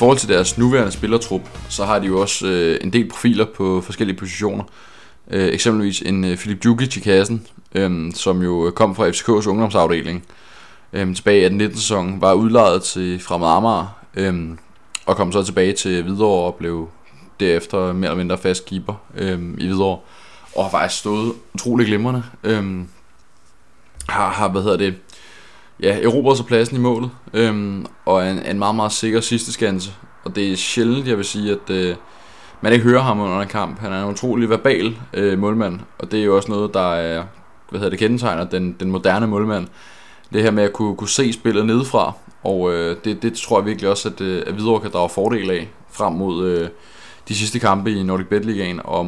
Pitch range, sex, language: 90-110 Hz, male, Danish